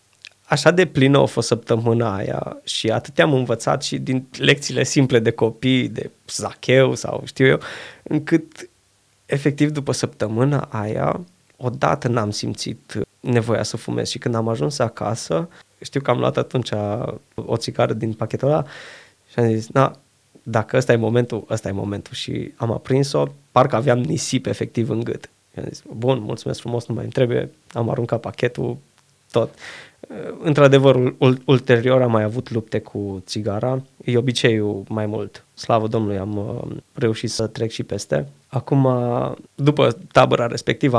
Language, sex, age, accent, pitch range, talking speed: Romanian, male, 20-39, native, 110-135 Hz, 155 wpm